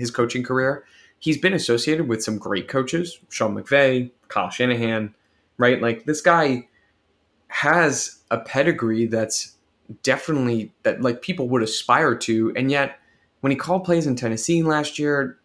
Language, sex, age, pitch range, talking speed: English, male, 20-39, 110-135 Hz, 150 wpm